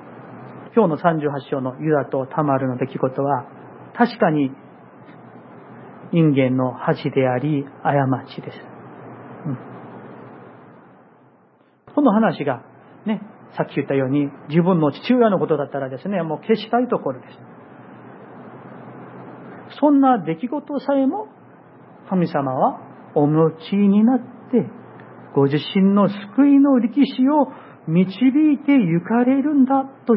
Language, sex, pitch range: Japanese, male, 145-245 Hz